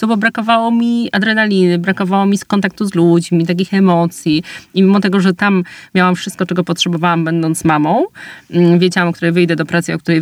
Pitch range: 160-185 Hz